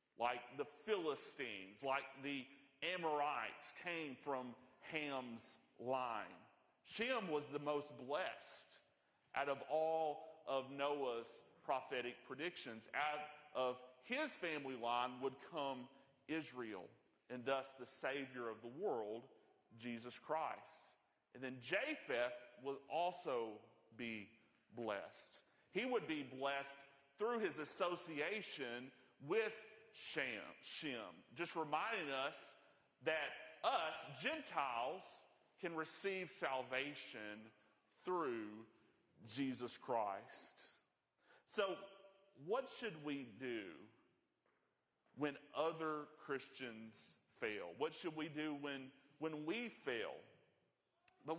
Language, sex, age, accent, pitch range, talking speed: English, male, 40-59, American, 125-170 Hz, 100 wpm